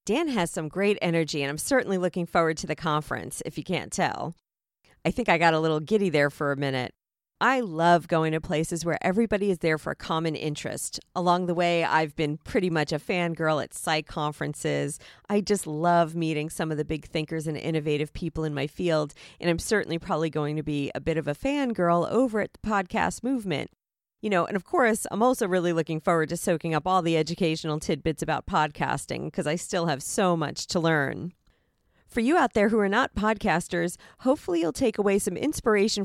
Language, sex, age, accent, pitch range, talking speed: English, female, 40-59, American, 160-225 Hz, 210 wpm